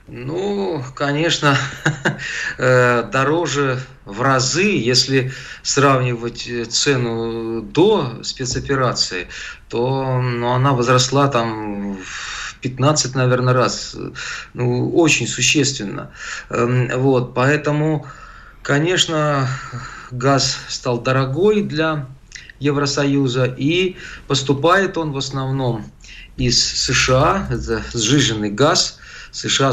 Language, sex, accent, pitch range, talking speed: Russian, male, native, 120-145 Hz, 85 wpm